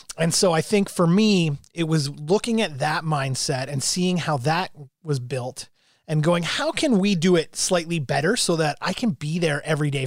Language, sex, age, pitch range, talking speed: English, male, 30-49, 145-180 Hz, 210 wpm